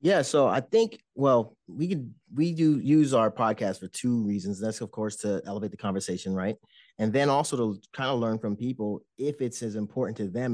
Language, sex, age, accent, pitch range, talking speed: English, male, 30-49, American, 105-125 Hz, 215 wpm